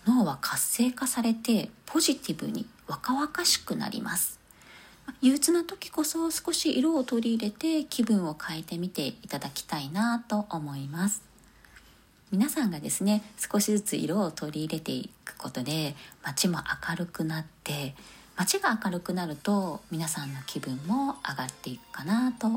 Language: Japanese